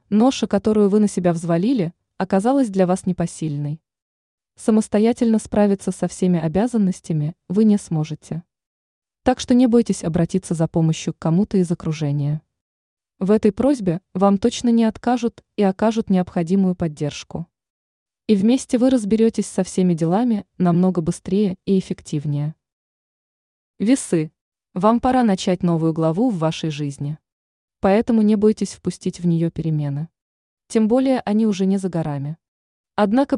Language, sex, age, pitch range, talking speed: Russian, female, 20-39, 170-225 Hz, 135 wpm